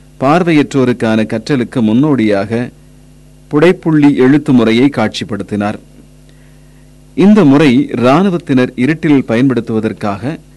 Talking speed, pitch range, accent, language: 70 wpm, 110-145 Hz, native, Tamil